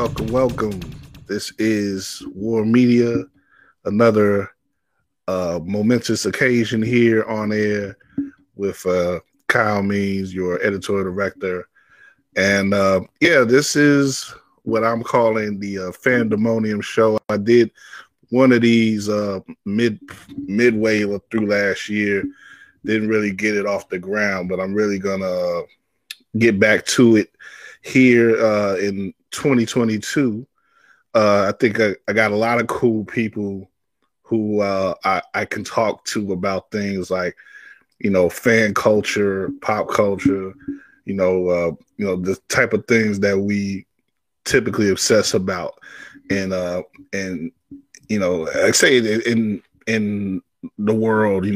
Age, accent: 20-39, American